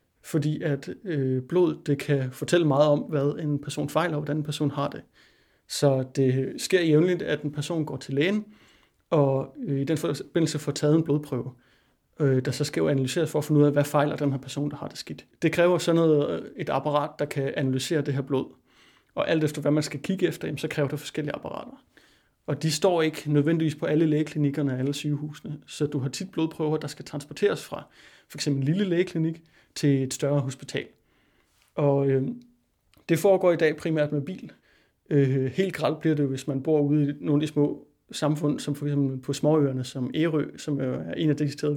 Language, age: Danish, 30-49